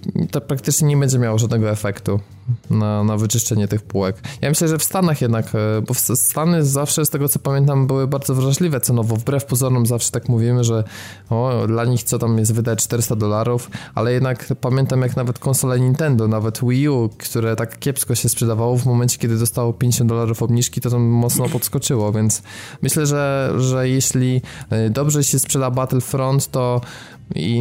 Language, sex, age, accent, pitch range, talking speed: Polish, male, 20-39, native, 110-130 Hz, 180 wpm